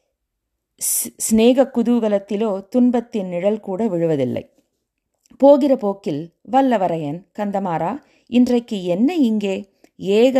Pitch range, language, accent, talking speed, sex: 170-235 Hz, Tamil, native, 80 wpm, female